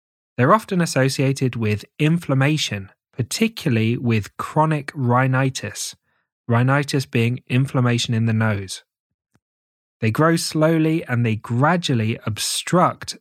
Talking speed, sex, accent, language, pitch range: 100 wpm, male, British, English, 115-150 Hz